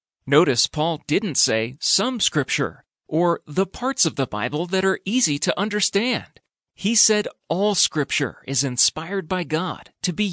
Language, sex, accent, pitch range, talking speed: English, male, American, 145-215 Hz, 155 wpm